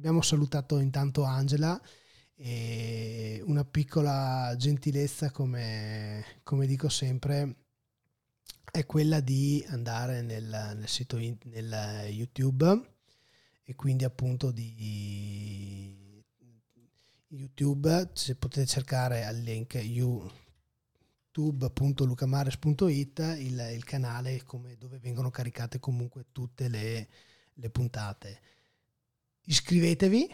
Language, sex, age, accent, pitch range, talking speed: Italian, male, 20-39, native, 115-140 Hz, 90 wpm